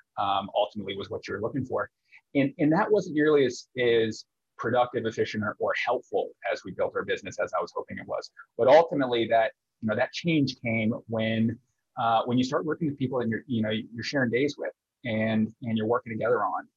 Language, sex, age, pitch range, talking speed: English, male, 30-49, 110-150 Hz, 220 wpm